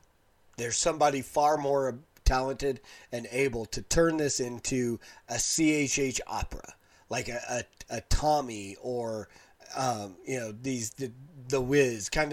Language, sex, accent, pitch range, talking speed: English, male, American, 115-145 Hz, 135 wpm